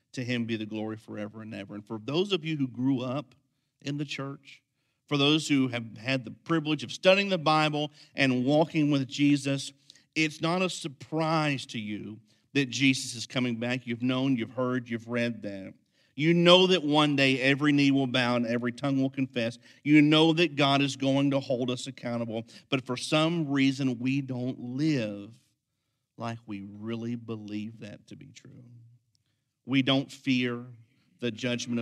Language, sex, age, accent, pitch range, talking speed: English, male, 50-69, American, 115-140 Hz, 180 wpm